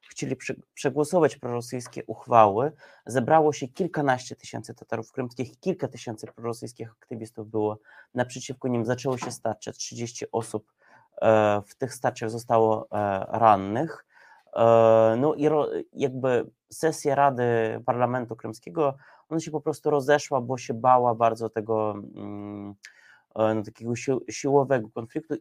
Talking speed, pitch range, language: 120 wpm, 110-130 Hz, Polish